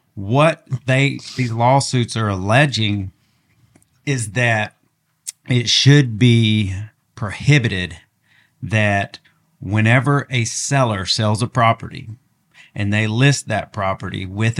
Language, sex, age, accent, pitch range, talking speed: English, male, 40-59, American, 105-130 Hz, 105 wpm